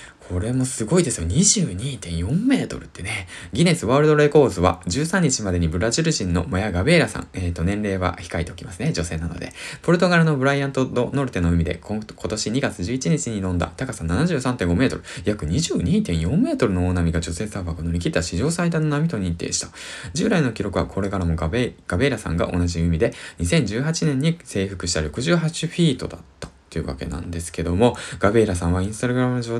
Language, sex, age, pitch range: Japanese, male, 20-39, 90-145 Hz